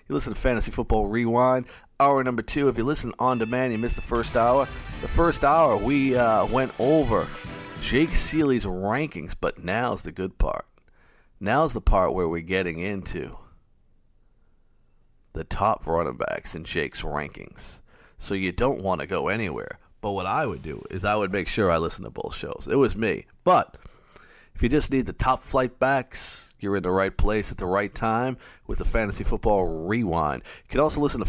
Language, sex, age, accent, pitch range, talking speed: English, male, 40-59, American, 95-130 Hz, 195 wpm